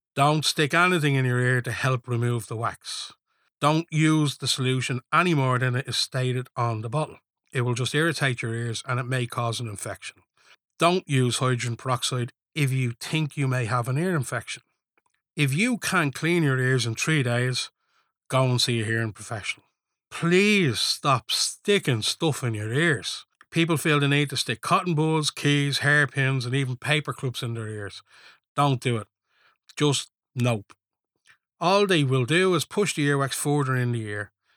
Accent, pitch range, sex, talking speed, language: Irish, 120-155 Hz, male, 180 wpm, English